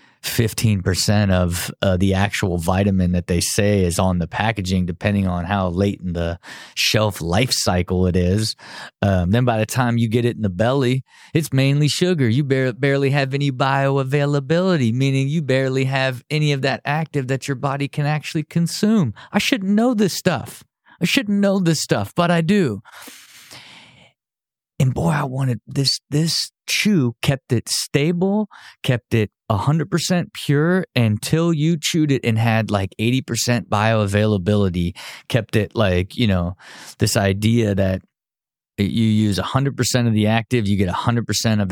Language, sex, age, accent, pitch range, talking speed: English, male, 30-49, American, 100-140 Hz, 160 wpm